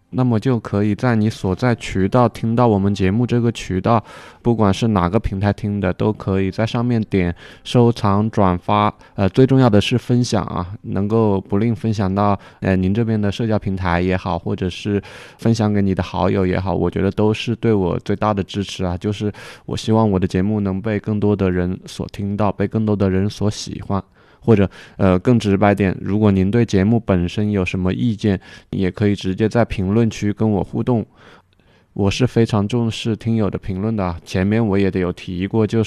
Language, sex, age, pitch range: Chinese, male, 20-39, 95-115 Hz